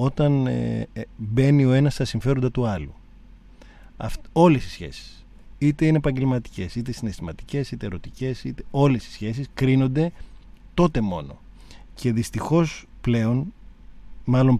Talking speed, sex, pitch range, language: 130 wpm, male, 105-150 Hz, Greek